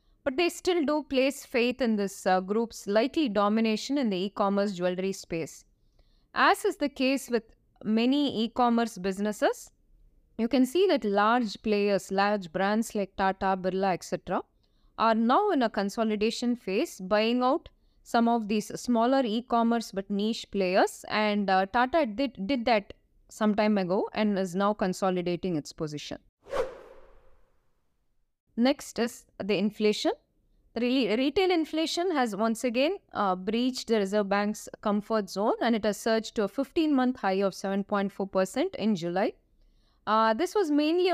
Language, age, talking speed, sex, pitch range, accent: English, 20-39, 150 wpm, female, 200-265 Hz, Indian